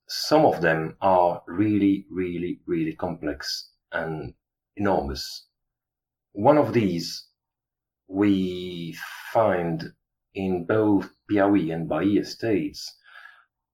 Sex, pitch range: male, 85-120 Hz